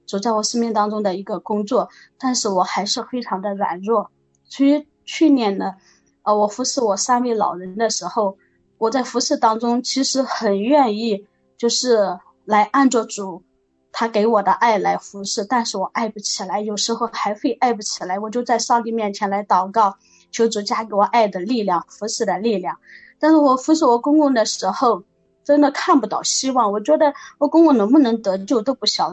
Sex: female